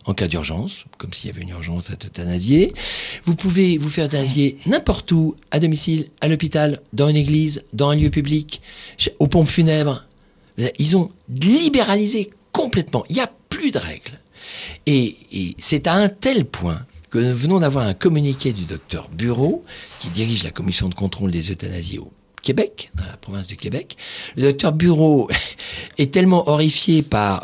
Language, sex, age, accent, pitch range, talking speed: French, male, 50-69, French, 100-160 Hz, 175 wpm